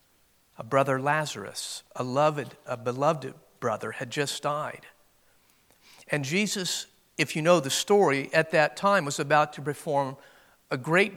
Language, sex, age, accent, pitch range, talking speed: English, male, 50-69, American, 130-175 Hz, 140 wpm